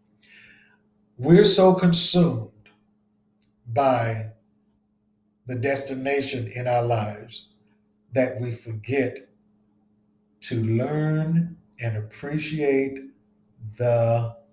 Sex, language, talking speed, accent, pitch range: male, English, 70 wpm, American, 115-140 Hz